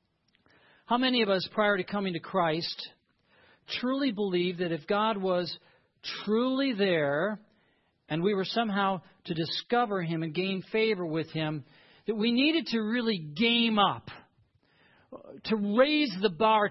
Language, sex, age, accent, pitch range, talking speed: English, male, 50-69, American, 175-230 Hz, 145 wpm